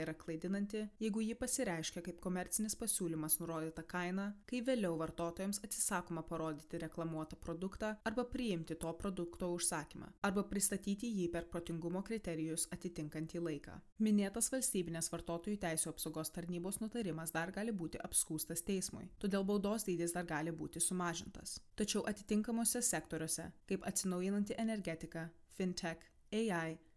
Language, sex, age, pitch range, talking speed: English, female, 20-39, 165-210 Hz, 125 wpm